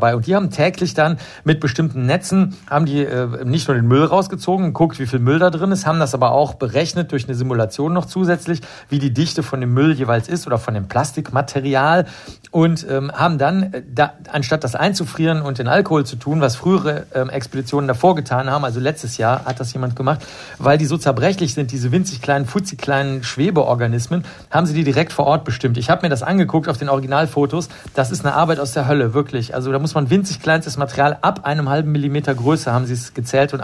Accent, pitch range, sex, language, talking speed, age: German, 130-160 Hz, male, German, 220 wpm, 50-69